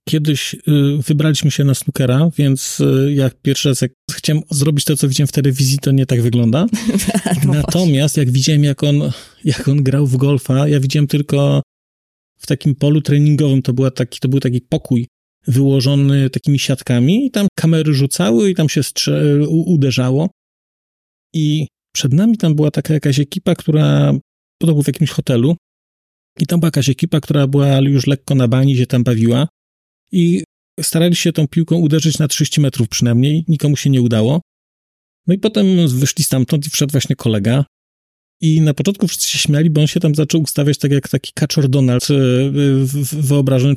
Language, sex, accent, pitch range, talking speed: Polish, male, native, 130-160 Hz, 170 wpm